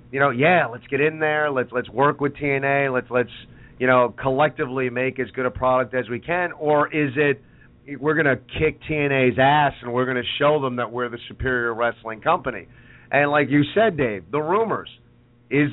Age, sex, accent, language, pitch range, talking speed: 40-59, male, American, English, 130-155 Hz, 200 wpm